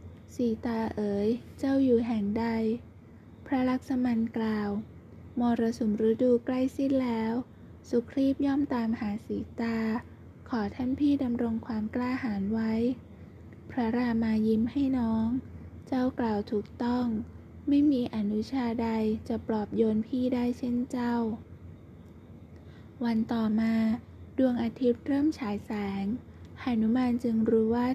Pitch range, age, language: 220-250 Hz, 20-39, Thai